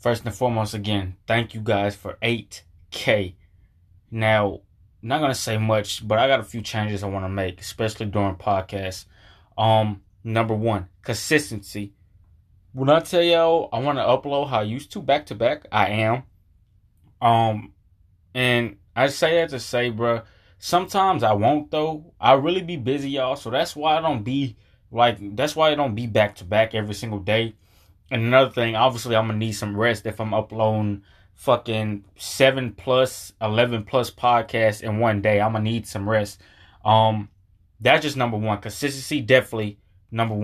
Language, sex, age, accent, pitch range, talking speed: English, male, 20-39, American, 100-130 Hz, 175 wpm